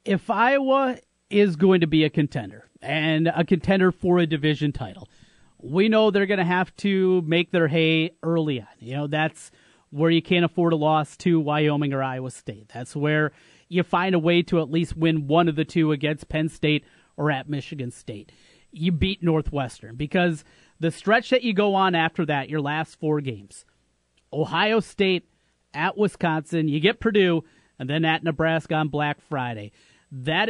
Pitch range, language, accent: 150-180 Hz, English, American